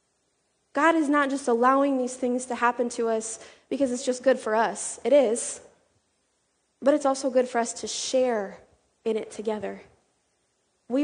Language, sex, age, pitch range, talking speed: English, female, 20-39, 220-260 Hz, 170 wpm